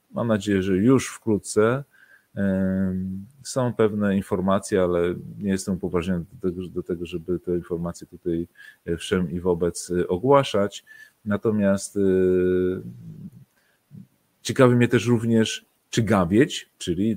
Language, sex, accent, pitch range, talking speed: Polish, male, native, 85-100 Hz, 110 wpm